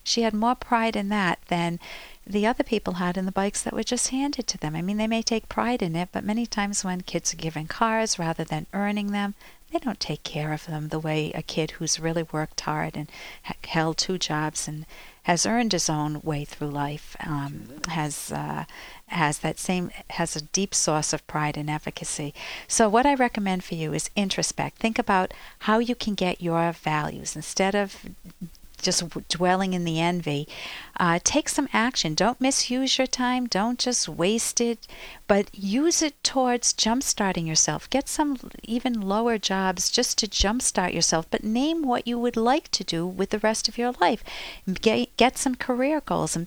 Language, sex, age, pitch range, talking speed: English, female, 50-69, 165-235 Hz, 190 wpm